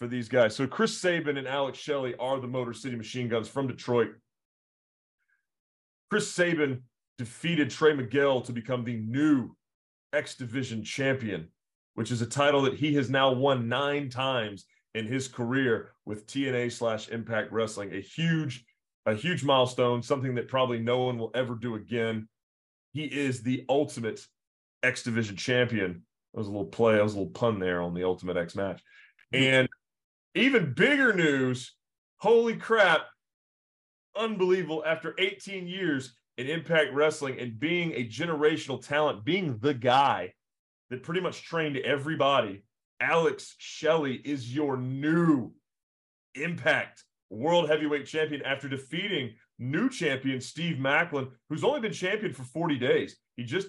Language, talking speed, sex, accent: English, 150 wpm, male, American